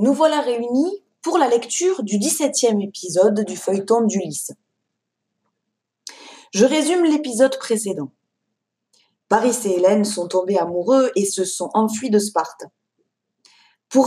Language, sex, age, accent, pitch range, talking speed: French, female, 20-39, French, 175-255 Hz, 125 wpm